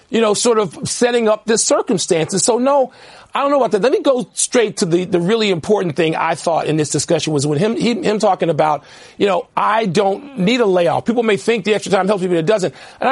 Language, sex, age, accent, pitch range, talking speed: English, male, 40-59, American, 190-235 Hz, 255 wpm